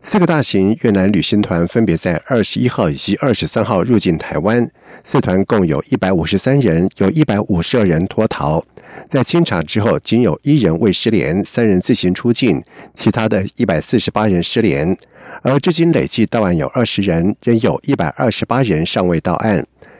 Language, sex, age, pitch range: German, male, 50-69, 95-130 Hz